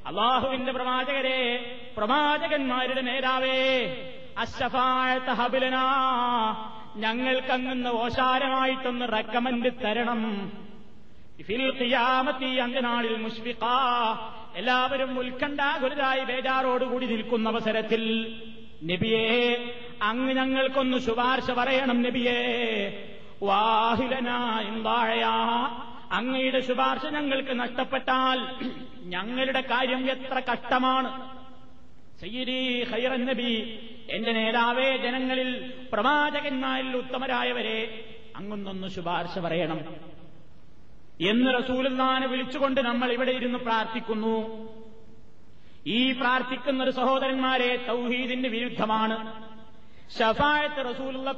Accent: native